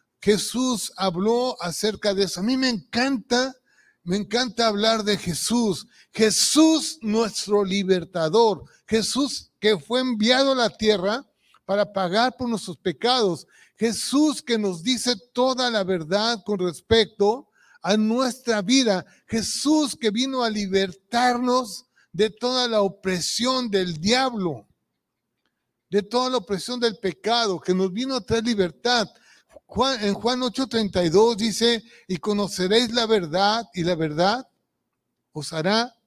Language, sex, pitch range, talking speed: Spanish, male, 190-240 Hz, 130 wpm